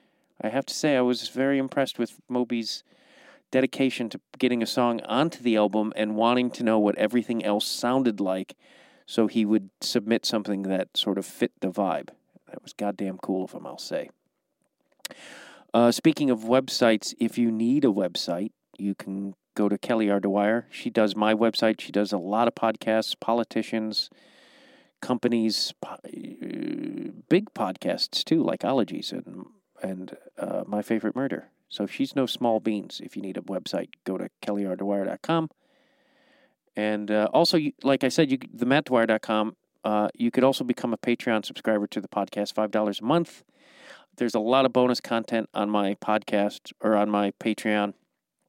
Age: 40-59